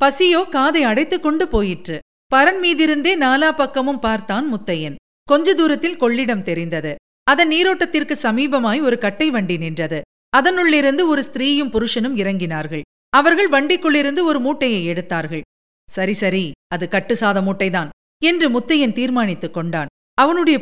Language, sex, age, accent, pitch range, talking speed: Tamil, female, 50-69, native, 205-300 Hz, 115 wpm